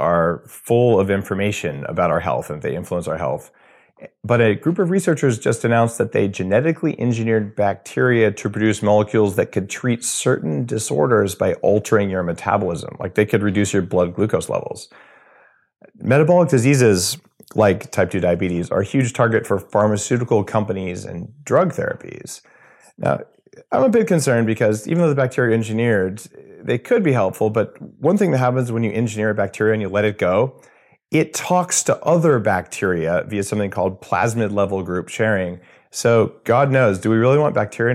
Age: 30-49